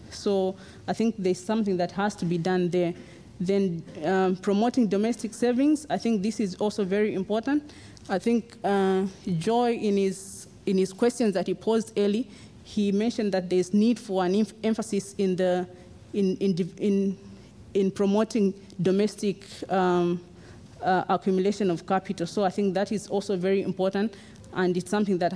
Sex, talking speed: female, 165 wpm